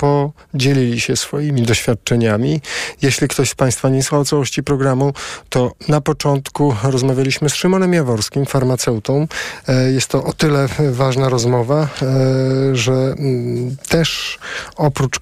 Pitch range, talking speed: 120-145 Hz, 115 wpm